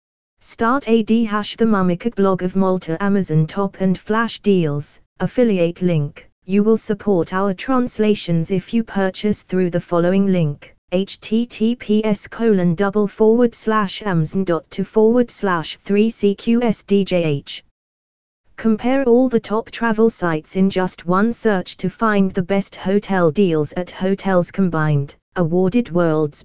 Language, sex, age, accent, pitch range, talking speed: English, female, 20-39, British, 170-215 Hz, 135 wpm